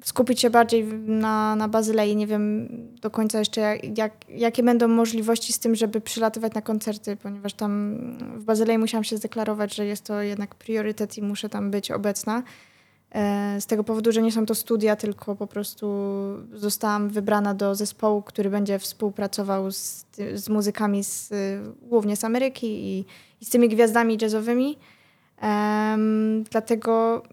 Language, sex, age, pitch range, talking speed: Polish, female, 20-39, 210-235 Hz, 150 wpm